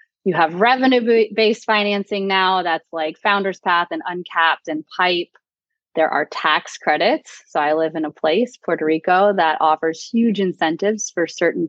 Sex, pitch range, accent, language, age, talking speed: female, 160-205 Hz, American, English, 20-39, 165 wpm